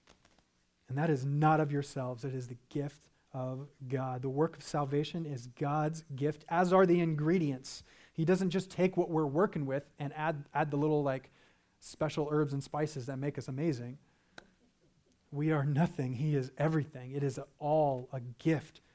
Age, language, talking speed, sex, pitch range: 30-49, English, 175 wpm, male, 135-160 Hz